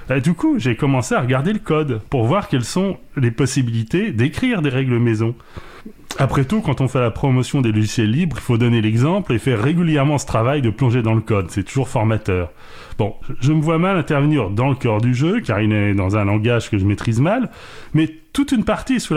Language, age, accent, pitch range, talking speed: French, 30-49, French, 110-155 Hz, 230 wpm